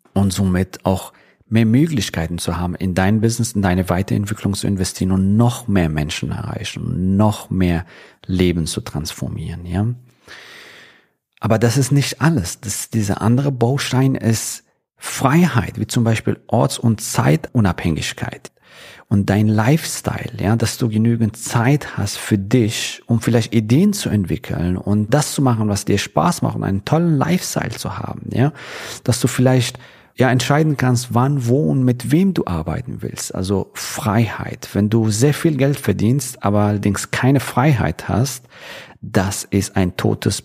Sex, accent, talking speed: male, German, 155 wpm